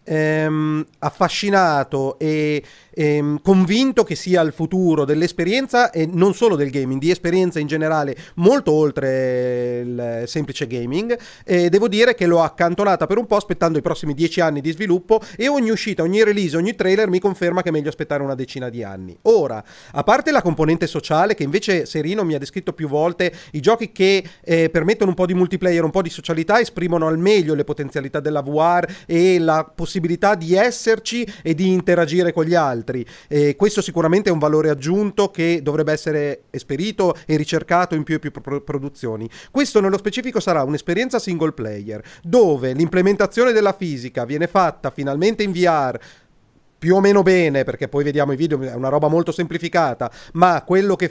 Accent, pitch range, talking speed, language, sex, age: native, 150-195 Hz, 180 wpm, Italian, male, 30-49